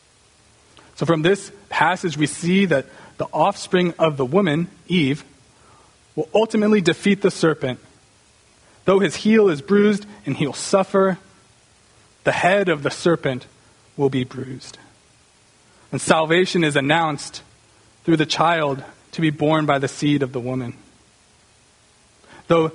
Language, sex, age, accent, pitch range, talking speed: English, male, 30-49, American, 135-175 Hz, 135 wpm